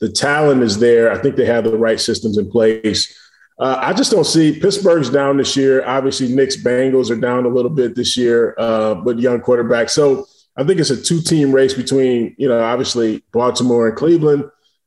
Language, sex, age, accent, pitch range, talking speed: English, male, 20-39, American, 115-135 Hz, 200 wpm